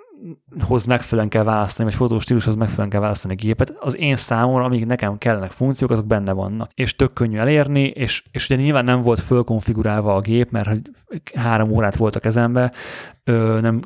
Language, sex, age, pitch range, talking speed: Hungarian, male, 30-49, 110-125 Hz, 180 wpm